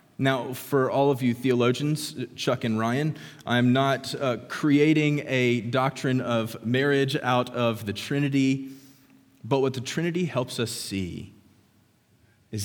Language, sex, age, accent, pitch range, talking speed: English, male, 30-49, American, 110-145 Hz, 140 wpm